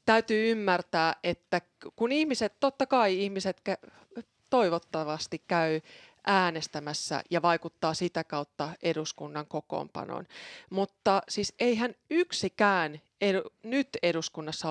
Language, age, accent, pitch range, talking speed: Finnish, 30-49, native, 155-200 Hz, 100 wpm